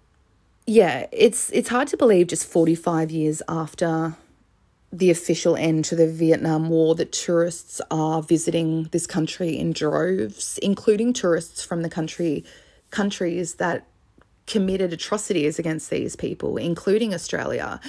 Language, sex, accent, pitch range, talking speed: English, female, Australian, 160-200 Hz, 130 wpm